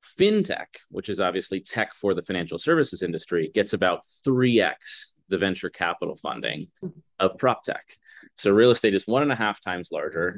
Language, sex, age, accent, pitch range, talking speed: English, male, 30-49, American, 90-120 Hz, 175 wpm